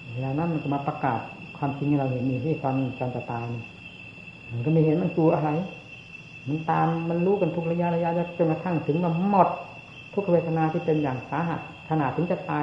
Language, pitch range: Thai, 135-160 Hz